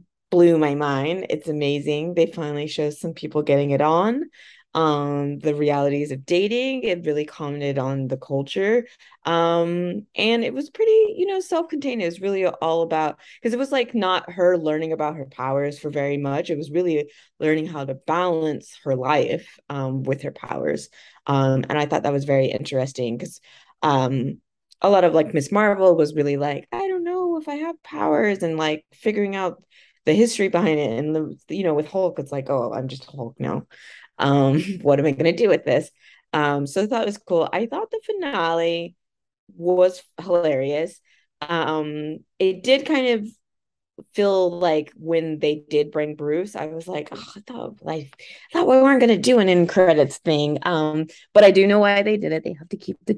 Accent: American